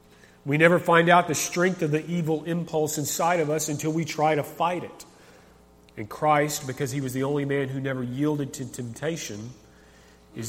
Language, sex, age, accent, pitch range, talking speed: English, male, 40-59, American, 120-150 Hz, 190 wpm